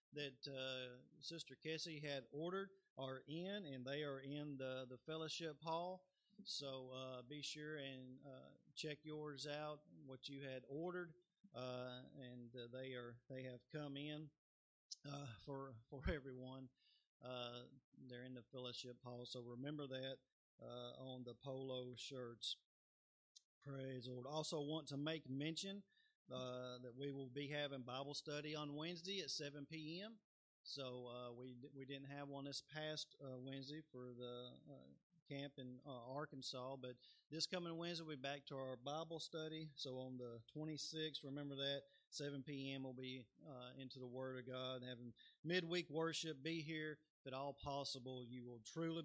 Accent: American